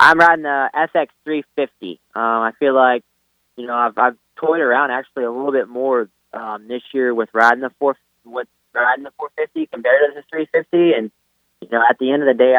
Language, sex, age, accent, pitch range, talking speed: English, male, 20-39, American, 115-130 Hz, 210 wpm